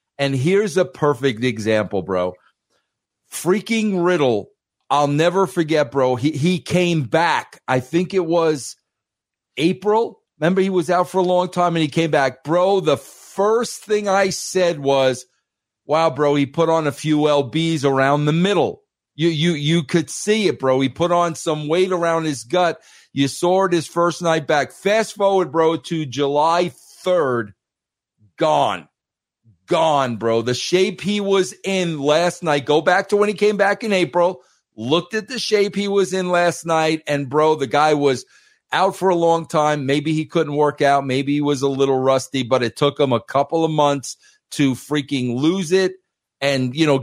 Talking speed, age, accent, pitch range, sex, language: 180 wpm, 40-59, American, 140-180 Hz, male, English